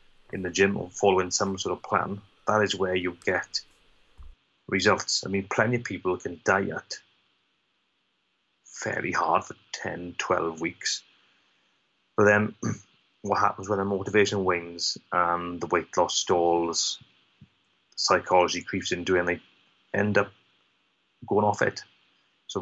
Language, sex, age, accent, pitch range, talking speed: English, male, 30-49, British, 90-105 Hz, 145 wpm